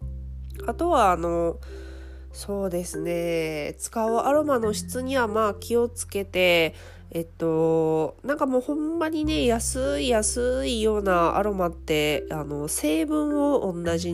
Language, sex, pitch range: Japanese, female, 155-235 Hz